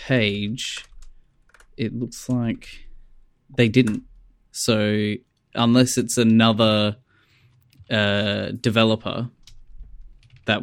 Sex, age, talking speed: male, 10-29, 75 wpm